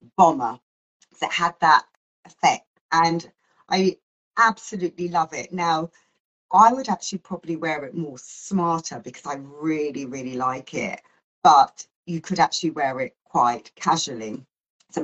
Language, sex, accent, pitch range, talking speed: English, female, British, 140-175 Hz, 135 wpm